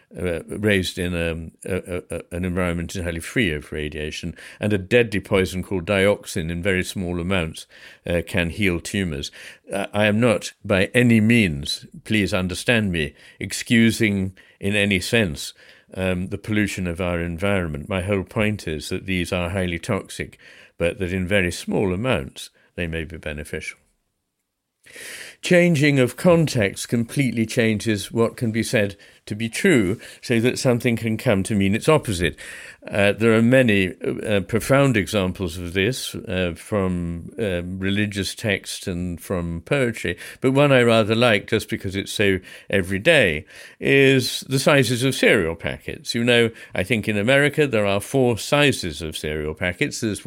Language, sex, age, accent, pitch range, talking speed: English, male, 50-69, British, 90-115 Hz, 155 wpm